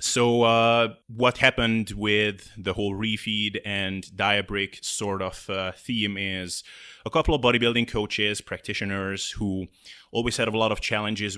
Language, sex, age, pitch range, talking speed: English, male, 20-39, 95-115 Hz, 150 wpm